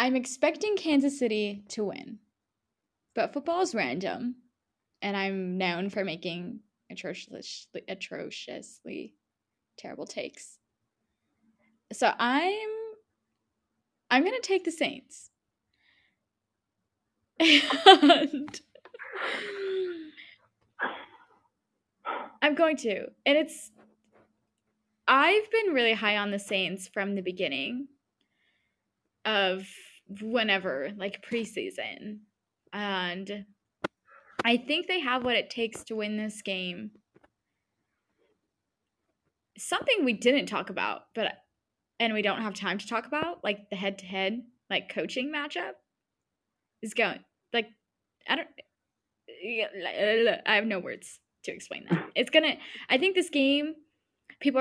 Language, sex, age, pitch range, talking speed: English, female, 20-39, 205-295 Hz, 105 wpm